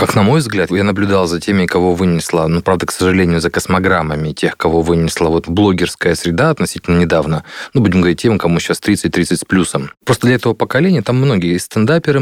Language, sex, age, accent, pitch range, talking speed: Russian, male, 30-49, native, 85-105 Hz, 195 wpm